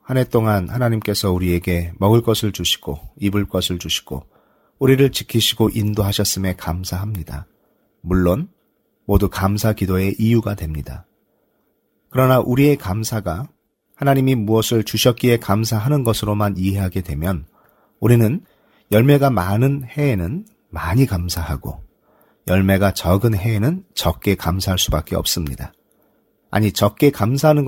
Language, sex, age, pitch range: Korean, male, 40-59, 90-120 Hz